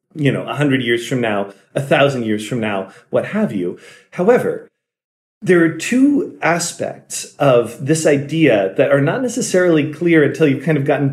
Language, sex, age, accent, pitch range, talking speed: English, male, 40-59, American, 125-160 Hz, 180 wpm